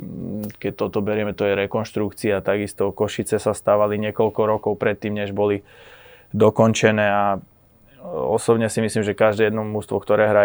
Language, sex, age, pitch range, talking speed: Slovak, male, 20-39, 100-110 Hz, 150 wpm